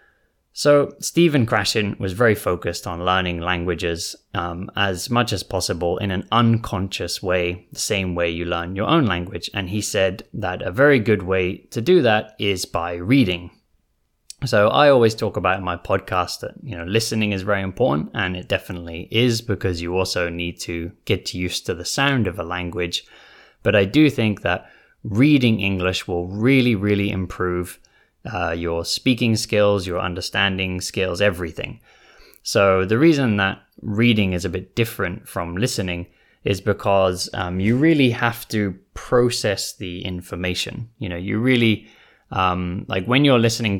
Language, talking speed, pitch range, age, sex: English, 165 wpm, 90-110 Hz, 20-39, male